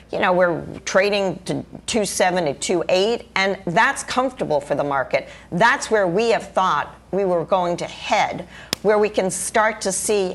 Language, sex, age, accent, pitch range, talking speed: English, female, 50-69, American, 175-220 Hz, 175 wpm